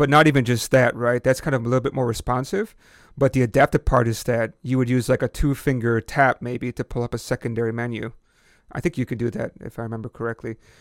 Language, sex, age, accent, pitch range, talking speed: English, male, 30-49, American, 120-135 Hz, 245 wpm